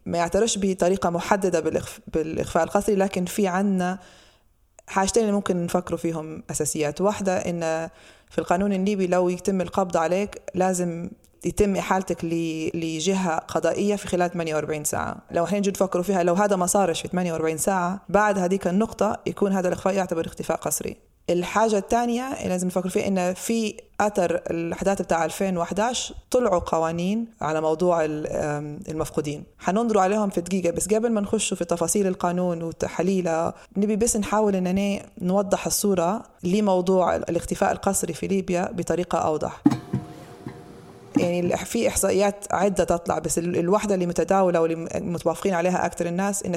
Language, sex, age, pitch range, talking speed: Arabic, female, 20-39, 170-200 Hz, 145 wpm